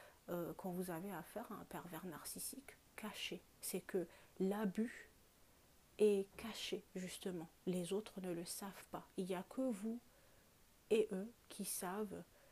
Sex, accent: female, French